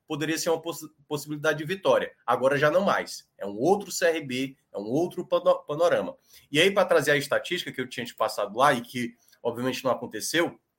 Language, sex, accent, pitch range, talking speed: Portuguese, male, Brazilian, 135-180 Hz, 205 wpm